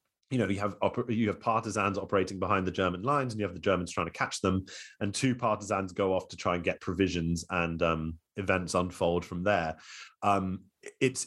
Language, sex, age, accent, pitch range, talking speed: English, male, 30-49, British, 95-120 Hz, 200 wpm